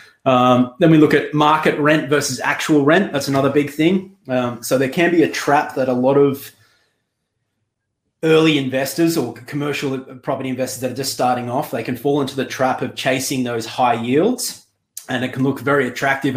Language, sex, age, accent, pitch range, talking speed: English, male, 20-39, Australian, 120-140 Hz, 195 wpm